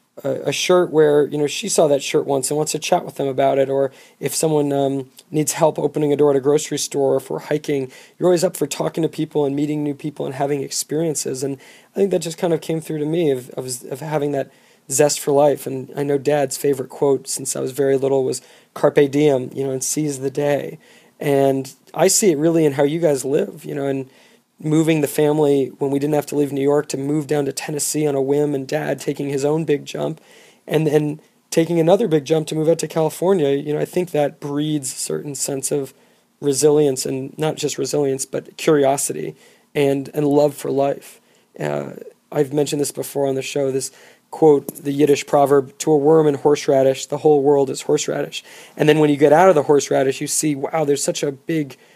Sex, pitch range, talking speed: male, 140-155 Hz, 230 wpm